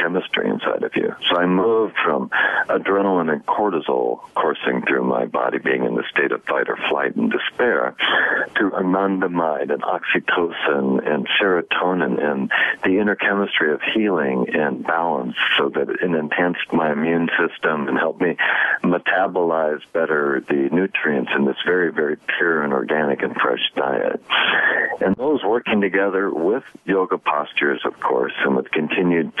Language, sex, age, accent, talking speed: English, male, 60-79, American, 155 wpm